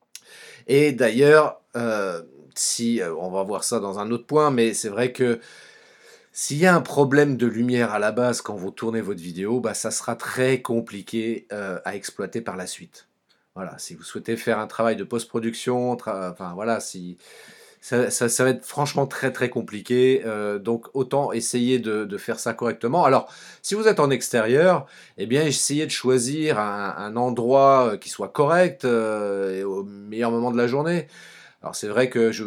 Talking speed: 190 wpm